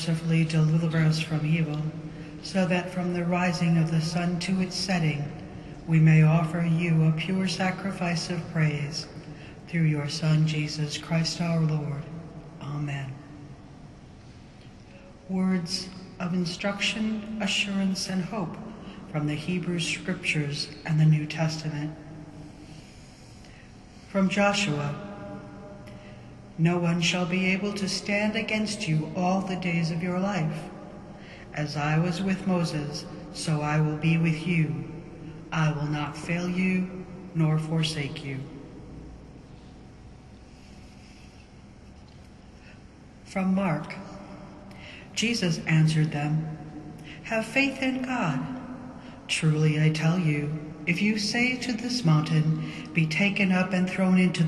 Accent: American